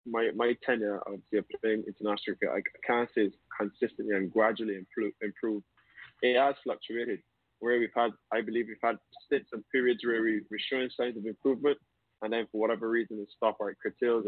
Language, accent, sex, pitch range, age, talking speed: English, British, male, 110-130 Hz, 20-39, 200 wpm